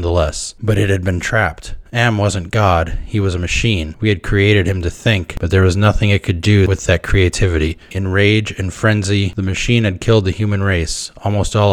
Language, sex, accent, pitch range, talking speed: English, male, American, 90-105 Hz, 215 wpm